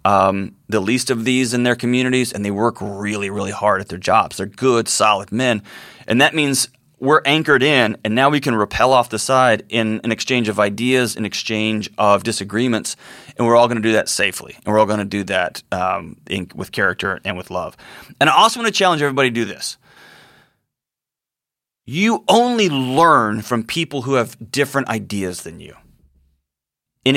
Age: 30-49